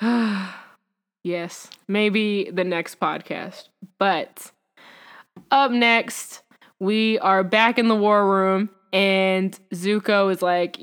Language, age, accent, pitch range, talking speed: English, 10-29, American, 190-225 Hz, 105 wpm